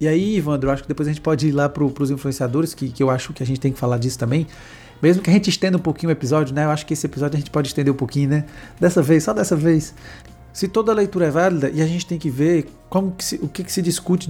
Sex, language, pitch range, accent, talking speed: male, Portuguese, 135-175 Hz, Brazilian, 310 wpm